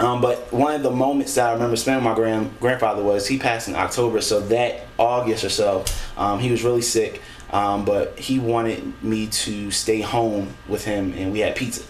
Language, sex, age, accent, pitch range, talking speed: English, male, 20-39, American, 105-130 Hz, 215 wpm